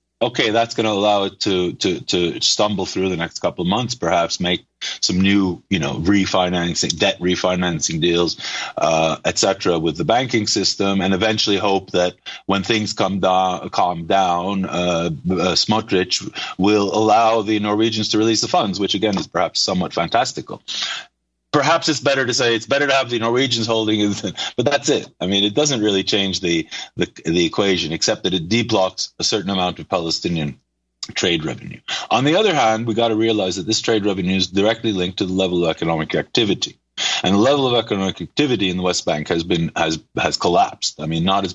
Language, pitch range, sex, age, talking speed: English, 90-110 Hz, male, 30-49, 200 wpm